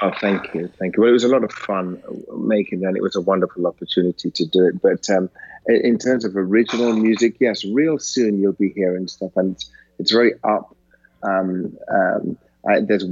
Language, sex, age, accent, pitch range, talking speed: English, male, 30-49, British, 95-110 Hz, 195 wpm